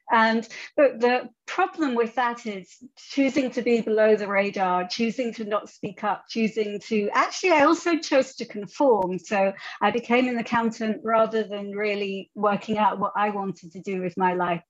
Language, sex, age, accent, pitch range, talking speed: English, female, 40-59, British, 200-245 Hz, 180 wpm